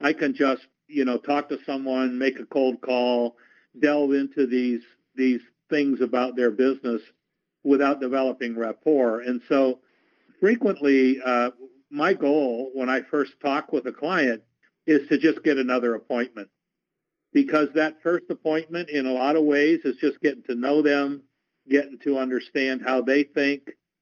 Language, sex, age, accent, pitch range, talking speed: English, male, 50-69, American, 130-150 Hz, 155 wpm